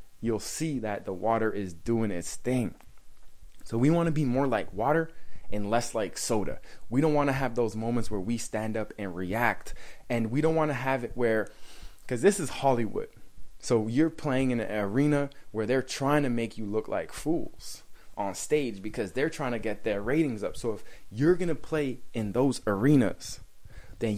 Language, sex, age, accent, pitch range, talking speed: English, male, 20-39, American, 110-135 Hz, 200 wpm